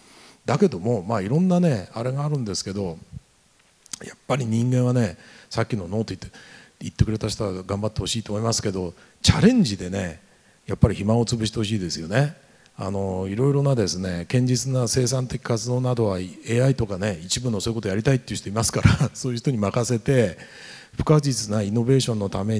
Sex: male